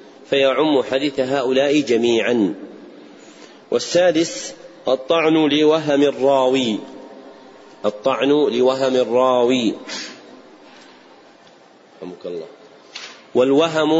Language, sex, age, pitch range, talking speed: Arabic, male, 40-59, 130-145 Hz, 50 wpm